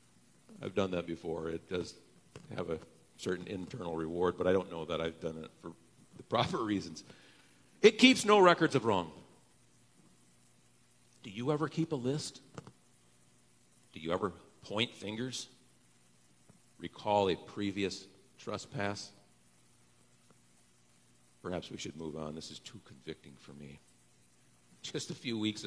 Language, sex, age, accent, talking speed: English, male, 50-69, American, 140 wpm